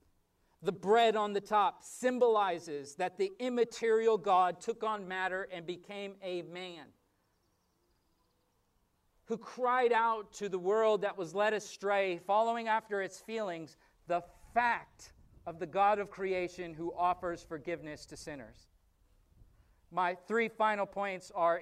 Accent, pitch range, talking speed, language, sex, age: American, 170-220 Hz, 135 wpm, English, male, 40-59